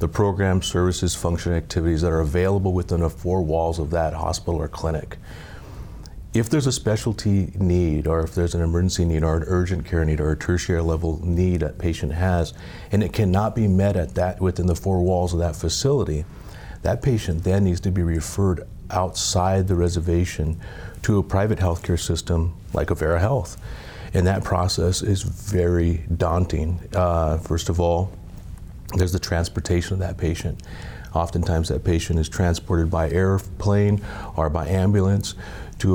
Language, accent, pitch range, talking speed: English, American, 85-95 Hz, 170 wpm